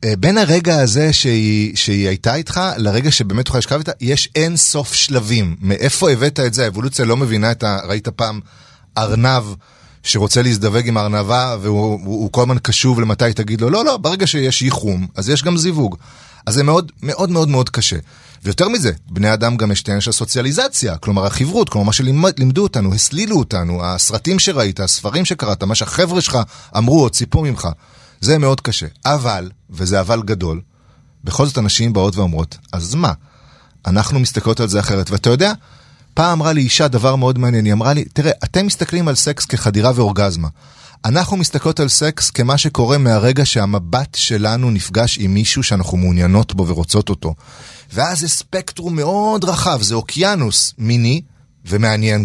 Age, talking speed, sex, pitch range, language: 30-49, 170 wpm, male, 105-145 Hz, Hebrew